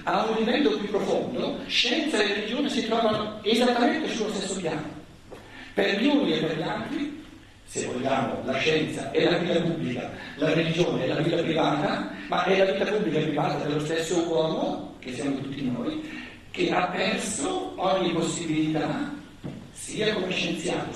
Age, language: 60-79, Italian